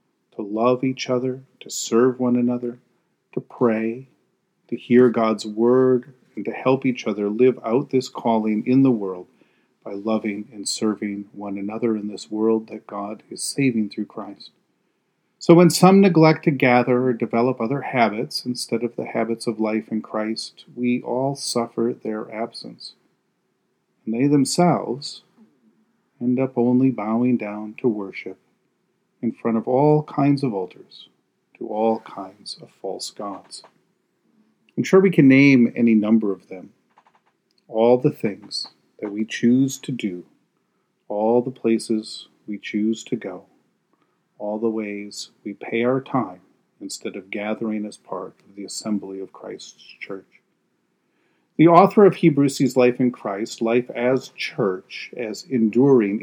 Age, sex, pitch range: 40-59, male, 110-130 Hz